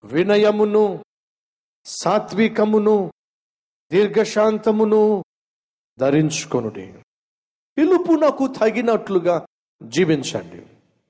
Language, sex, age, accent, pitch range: Telugu, male, 50-69, native, 155-220 Hz